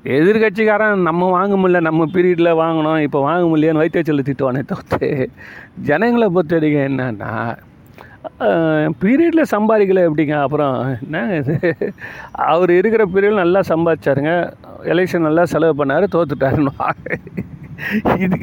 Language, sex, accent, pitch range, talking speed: Tamil, male, native, 150-190 Hz, 95 wpm